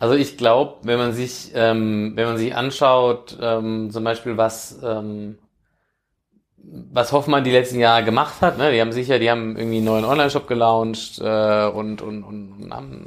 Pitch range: 115-140 Hz